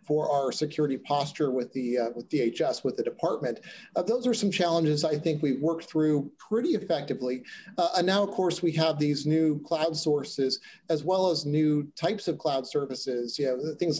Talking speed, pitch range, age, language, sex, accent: 195 wpm, 145-180 Hz, 40-59, English, male, American